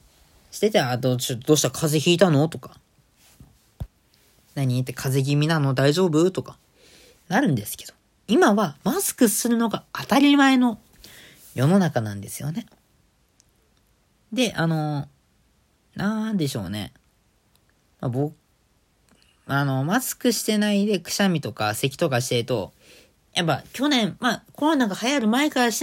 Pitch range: 130-210 Hz